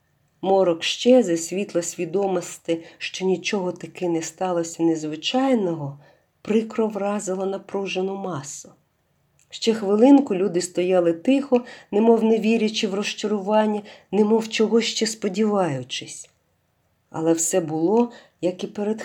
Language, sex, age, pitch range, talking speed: Ukrainian, female, 50-69, 170-225 Hz, 110 wpm